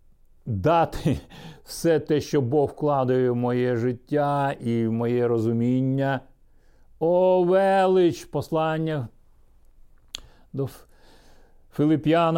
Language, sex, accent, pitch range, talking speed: Ukrainian, male, native, 125-175 Hz, 80 wpm